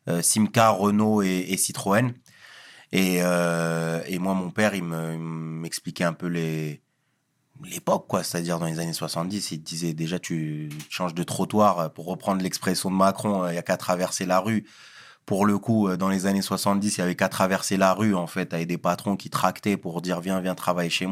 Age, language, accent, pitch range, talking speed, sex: 30-49, French, French, 95-125 Hz, 205 wpm, male